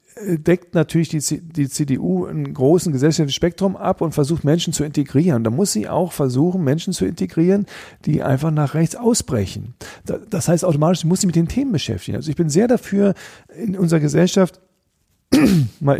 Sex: male